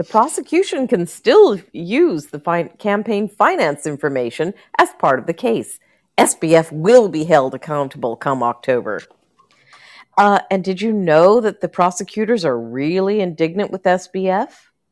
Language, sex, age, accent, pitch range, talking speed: English, female, 50-69, American, 160-235 Hz, 135 wpm